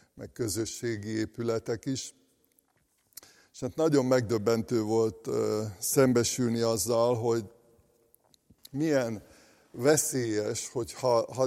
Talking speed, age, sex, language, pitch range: 95 wpm, 60-79, male, Hungarian, 110-125 Hz